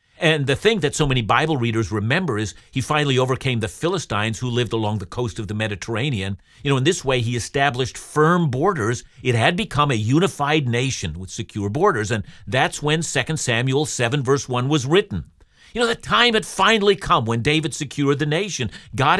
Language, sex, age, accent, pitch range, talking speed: English, male, 50-69, American, 120-160 Hz, 200 wpm